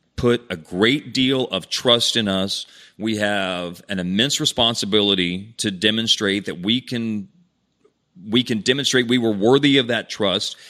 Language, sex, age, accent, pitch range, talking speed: English, male, 40-59, American, 95-110 Hz, 150 wpm